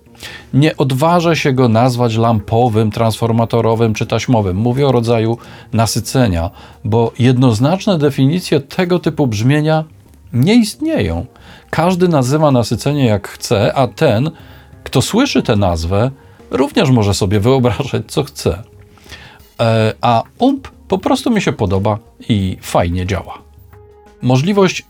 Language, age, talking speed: Polish, 40-59, 120 wpm